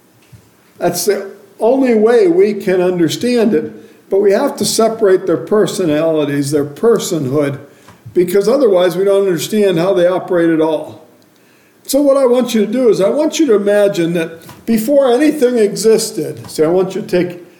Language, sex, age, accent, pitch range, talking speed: English, male, 50-69, American, 155-220 Hz, 170 wpm